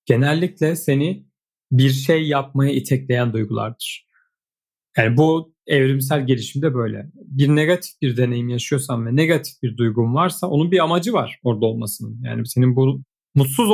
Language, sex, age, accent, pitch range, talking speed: Turkish, male, 40-59, native, 125-185 Hz, 140 wpm